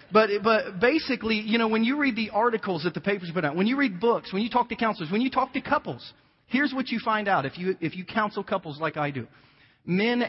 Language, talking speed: English, 255 wpm